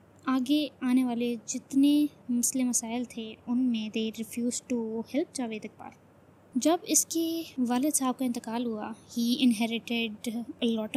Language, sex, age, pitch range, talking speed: Urdu, female, 20-39, 235-275 Hz, 140 wpm